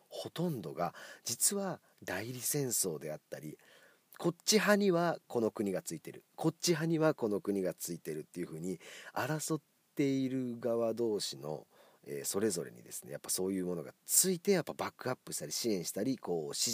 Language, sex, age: Japanese, male, 40-59